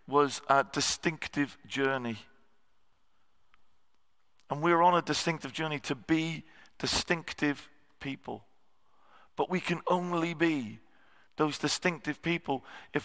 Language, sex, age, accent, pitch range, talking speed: English, male, 40-59, British, 115-160 Hz, 105 wpm